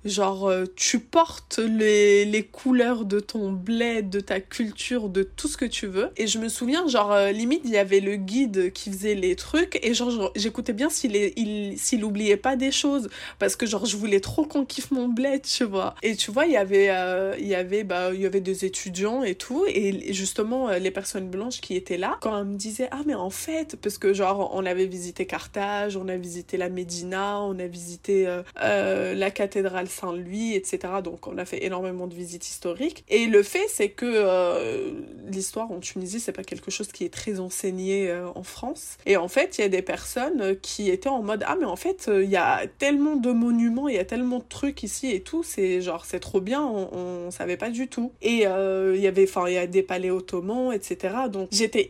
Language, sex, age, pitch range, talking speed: French, female, 20-39, 190-255 Hz, 225 wpm